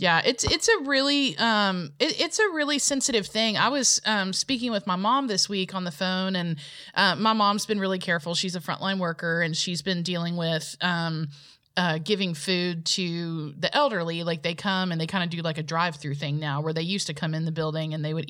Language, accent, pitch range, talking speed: English, American, 160-210 Hz, 230 wpm